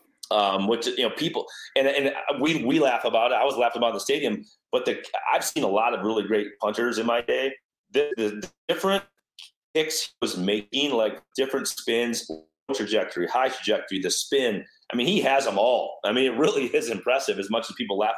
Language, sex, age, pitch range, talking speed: English, male, 30-49, 105-155 Hz, 210 wpm